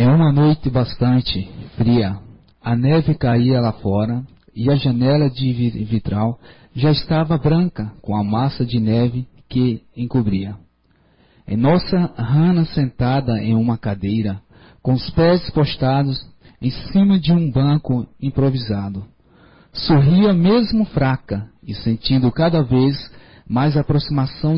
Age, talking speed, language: 40-59, 125 wpm, Portuguese